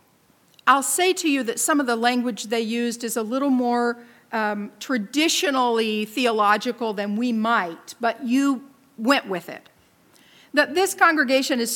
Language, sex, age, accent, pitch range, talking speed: English, female, 50-69, American, 230-305 Hz, 155 wpm